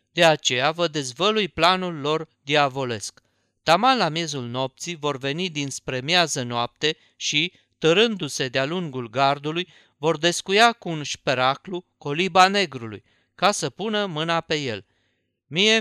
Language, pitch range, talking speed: Romanian, 130-180 Hz, 135 wpm